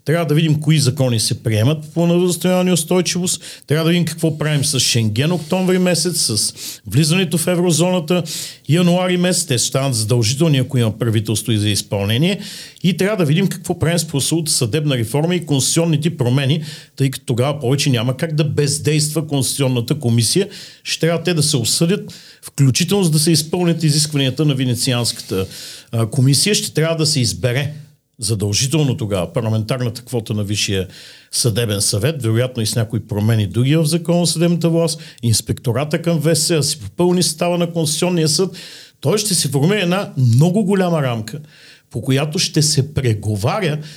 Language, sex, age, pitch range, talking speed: Bulgarian, male, 50-69, 125-165 Hz, 160 wpm